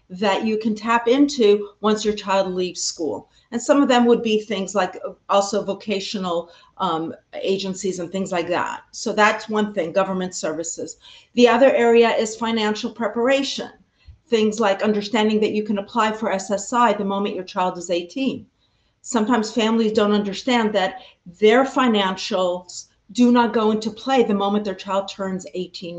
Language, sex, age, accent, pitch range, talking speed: English, female, 50-69, American, 195-235 Hz, 165 wpm